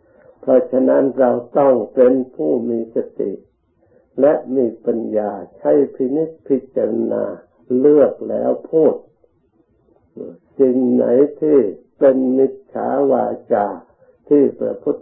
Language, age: Thai, 60-79